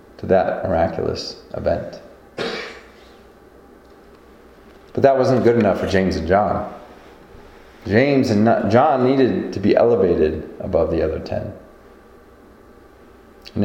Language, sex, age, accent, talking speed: English, male, 30-49, American, 110 wpm